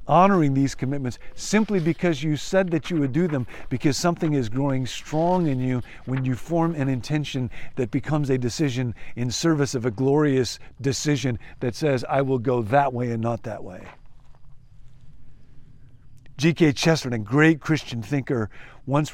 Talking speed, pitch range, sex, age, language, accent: 165 wpm, 120-150 Hz, male, 50-69, English, American